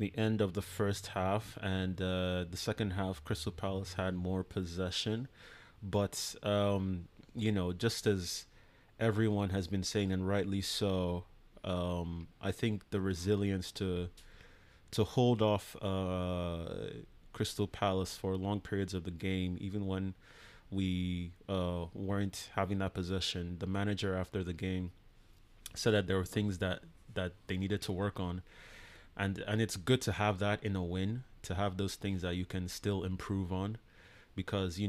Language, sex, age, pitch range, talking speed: English, male, 30-49, 90-105 Hz, 160 wpm